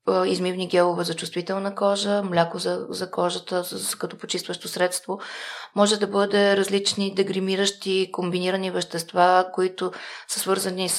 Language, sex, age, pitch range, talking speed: Bulgarian, female, 20-39, 160-195 Hz, 125 wpm